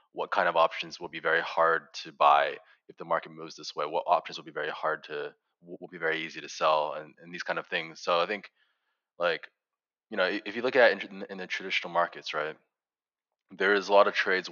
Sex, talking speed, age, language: male, 245 wpm, 20-39, English